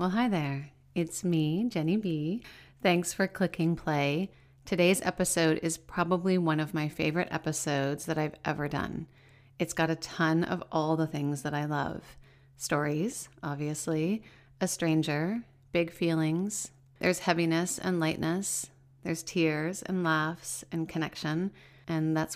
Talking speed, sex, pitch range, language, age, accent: 140 wpm, female, 150-175 Hz, English, 30-49, American